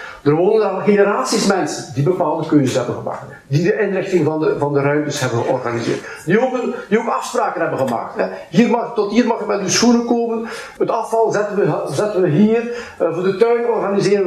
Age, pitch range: 50-69, 155-230 Hz